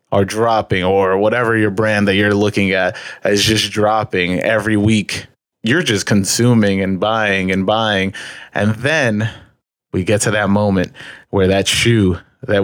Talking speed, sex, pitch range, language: 155 wpm, male, 100-120 Hz, English